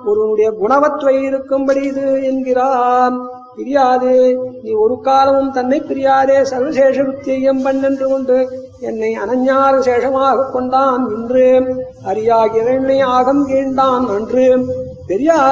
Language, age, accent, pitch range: Tamil, 50-69, native, 250-275 Hz